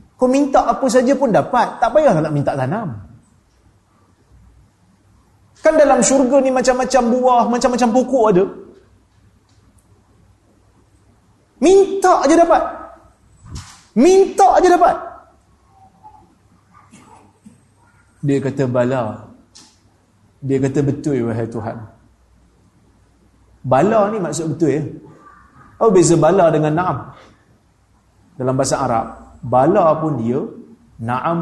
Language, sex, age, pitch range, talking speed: Malay, male, 30-49, 110-175 Hz, 105 wpm